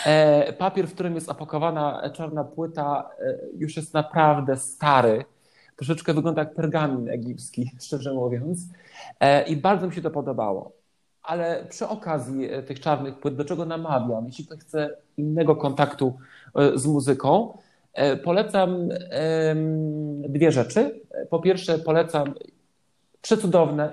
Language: Polish